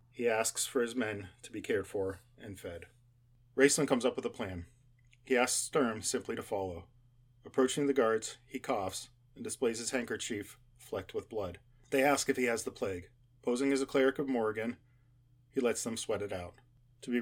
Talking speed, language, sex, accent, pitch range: 195 wpm, English, male, American, 115-125 Hz